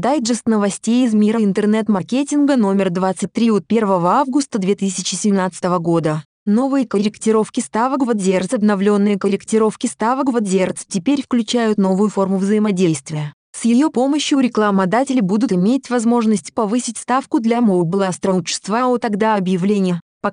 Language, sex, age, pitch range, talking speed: Russian, female, 20-39, 190-235 Hz, 130 wpm